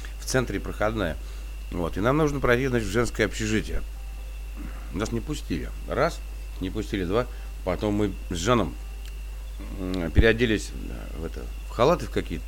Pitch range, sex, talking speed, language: 65-110 Hz, male, 135 wpm, Russian